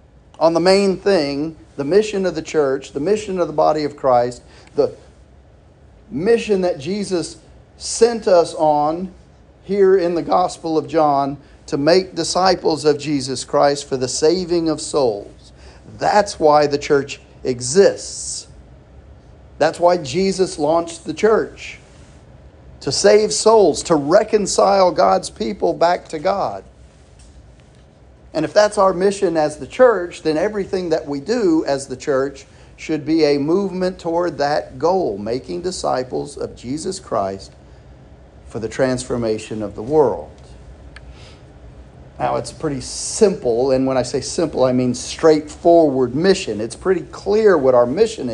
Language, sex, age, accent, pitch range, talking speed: English, male, 40-59, American, 130-185 Hz, 140 wpm